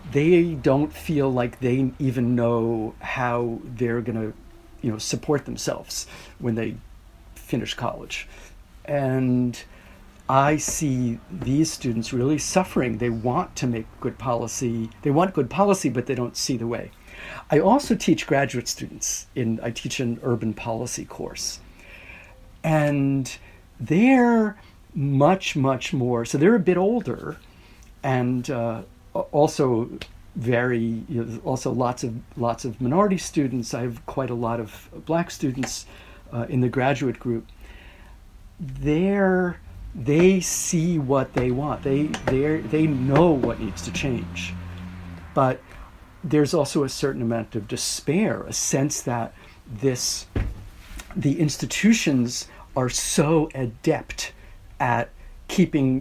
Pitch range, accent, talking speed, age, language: 115-145 Hz, American, 130 wpm, 50-69, English